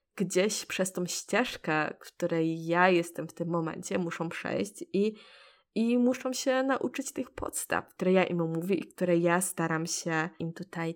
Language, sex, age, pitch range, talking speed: Polish, female, 20-39, 170-225 Hz, 165 wpm